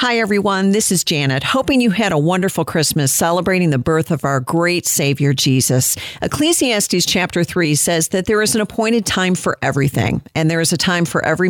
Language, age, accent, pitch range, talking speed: English, 50-69, American, 145-185 Hz, 200 wpm